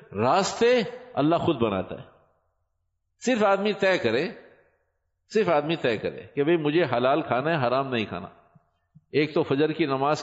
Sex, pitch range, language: male, 130-180 Hz, Urdu